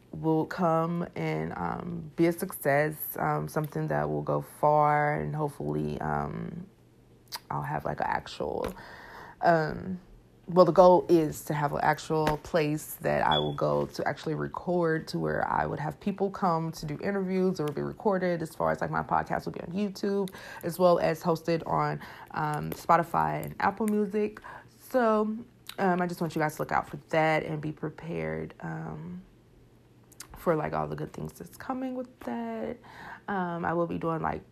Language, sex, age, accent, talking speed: English, female, 20-39, American, 180 wpm